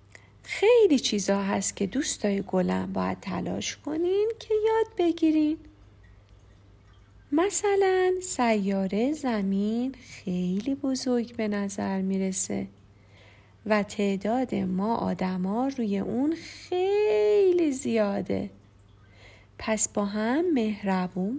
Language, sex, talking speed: Persian, female, 90 wpm